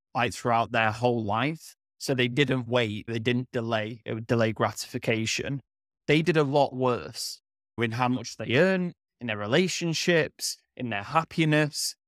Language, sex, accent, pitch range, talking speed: English, male, British, 115-150 Hz, 160 wpm